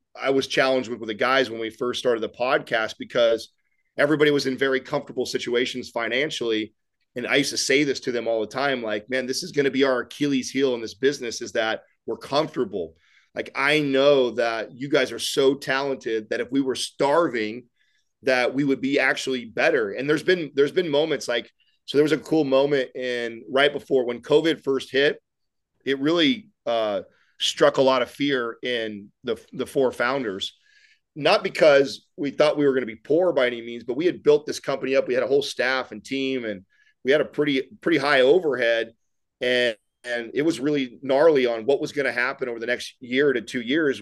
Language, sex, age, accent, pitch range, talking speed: English, male, 30-49, American, 120-150 Hz, 215 wpm